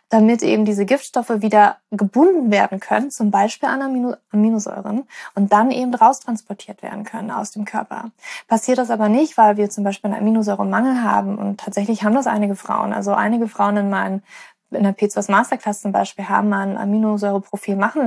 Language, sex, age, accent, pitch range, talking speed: German, female, 20-39, German, 200-230 Hz, 185 wpm